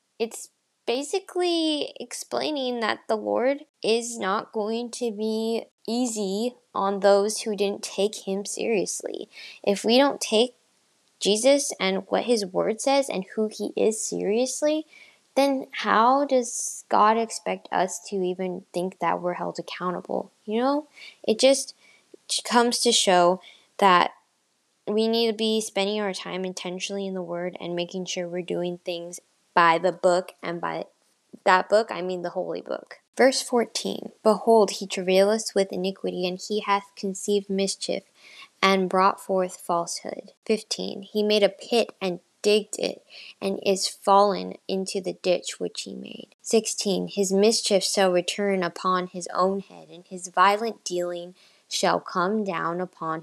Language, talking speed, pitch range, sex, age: English, 150 wpm, 185-230 Hz, female, 10-29